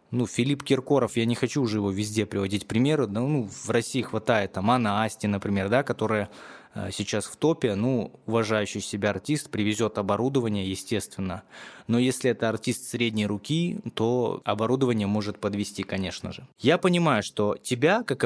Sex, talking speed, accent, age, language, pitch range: male, 160 wpm, native, 20-39, Russian, 105-135 Hz